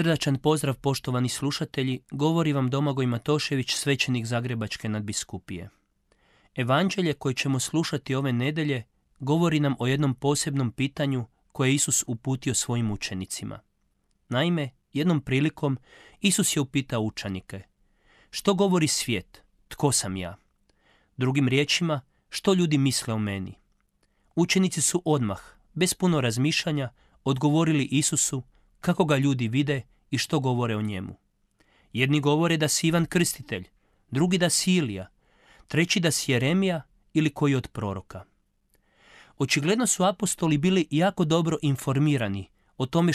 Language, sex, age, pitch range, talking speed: Croatian, male, 30-49, 120-155 Hz, 130 wpm